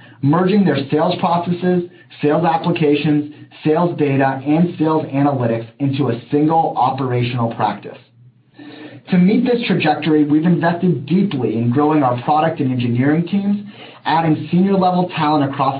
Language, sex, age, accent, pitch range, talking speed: English, male, 30-49, American, 135-170 Hz, 135 wpm